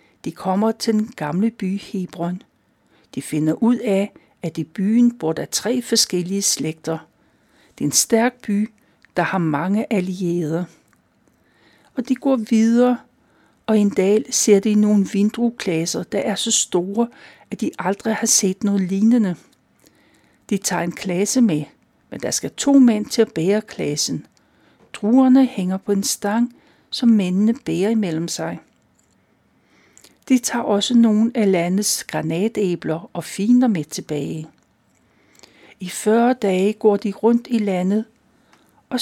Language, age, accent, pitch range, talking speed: Danish, 60-79, native, 185-230 Hz, 145 wpm